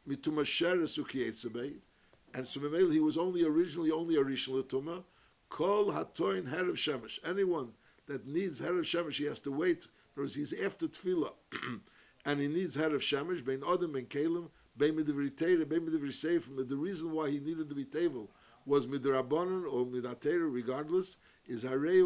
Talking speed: 165 wpm